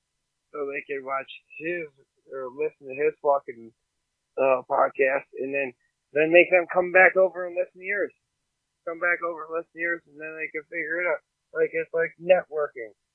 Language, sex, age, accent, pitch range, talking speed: English, male, 30-49, American, 120-155 Hz, 190 wpm